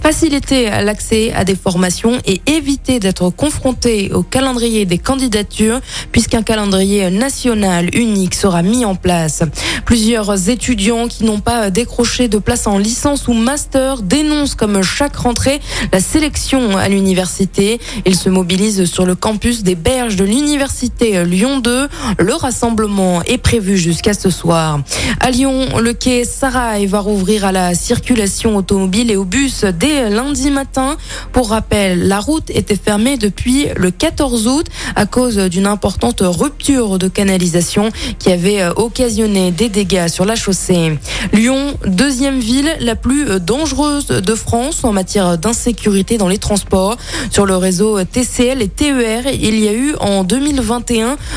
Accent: French